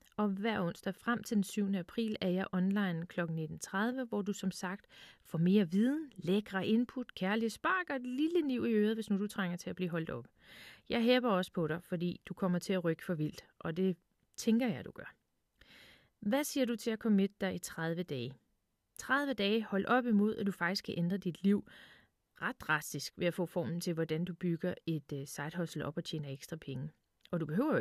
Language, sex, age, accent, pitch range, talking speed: Danish, female, 30-49, native, 170-225 Hz, 220 wpm